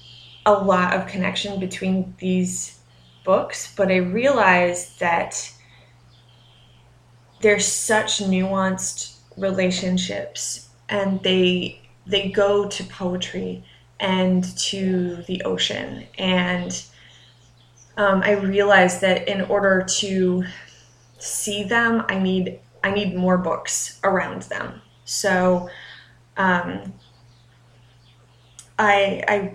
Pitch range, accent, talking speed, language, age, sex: 150-200 Hz, American, 95 wpm, English, 20-39, female